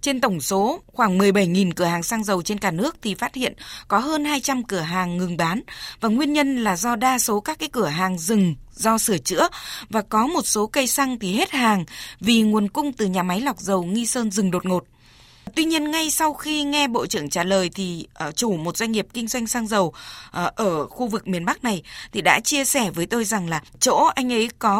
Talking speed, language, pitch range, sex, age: 230 wpm, Vietnamese, 200-275 Hz, female, 20-39